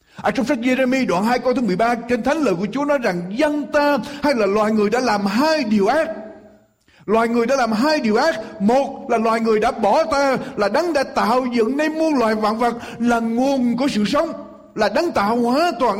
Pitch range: 175-265 Hz